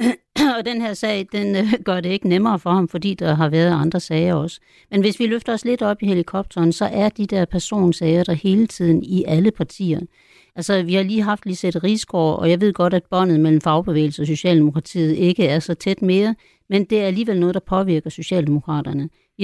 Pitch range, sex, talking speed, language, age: 160-200 Hz, female, 215 wpm, Danish, 60-79